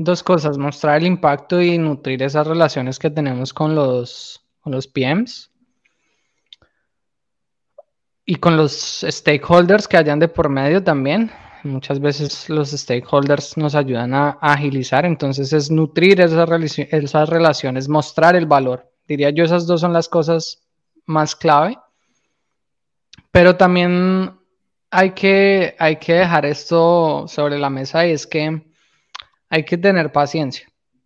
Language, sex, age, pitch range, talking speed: Spanish, male, 20-39, 145-170 Hz, 135 wpm